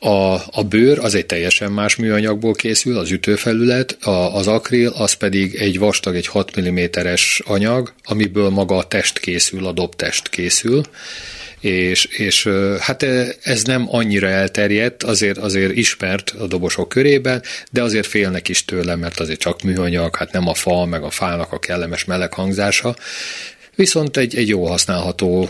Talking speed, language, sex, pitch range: 155 wpm, Hungarian, male, 95-115 Hz